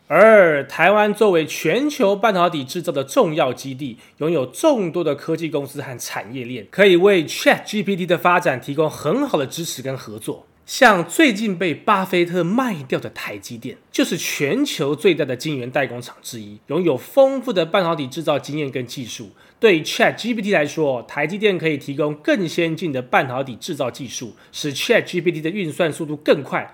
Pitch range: 140-195 Hz